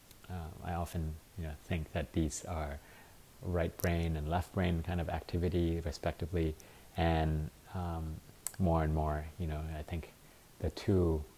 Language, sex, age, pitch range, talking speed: English, male, 30-49, 75-90 Hz, 155 wpm